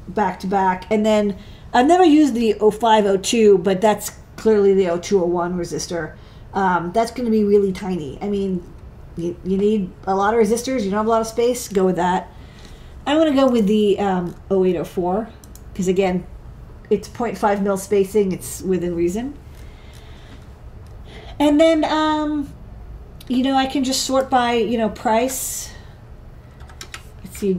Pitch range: 185-240 Hz